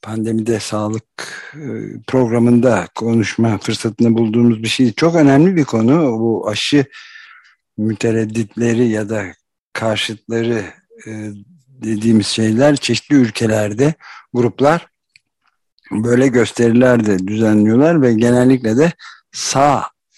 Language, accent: Turkish, native